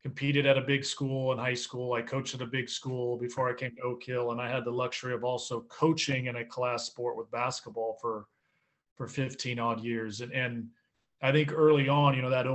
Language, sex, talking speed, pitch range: English, male, 230 wpm, 125-150 Hz